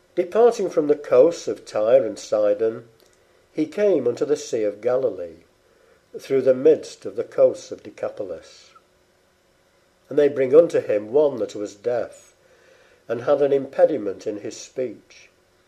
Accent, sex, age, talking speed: British, male, 60-79, 150 wpm